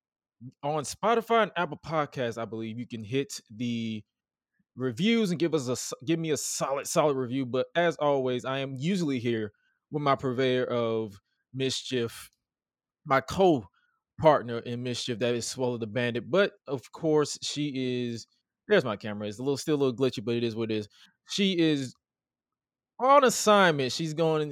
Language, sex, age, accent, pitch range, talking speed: English, male, 20-39, American, 115-145 Hz, 170 wpm